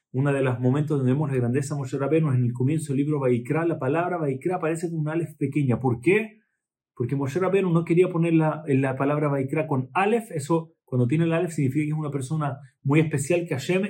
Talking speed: 230 wpm